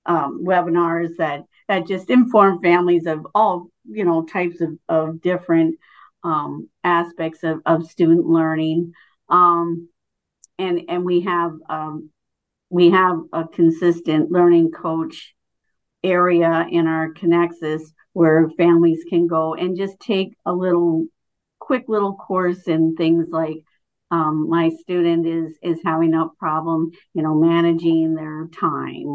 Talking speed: 135 wpm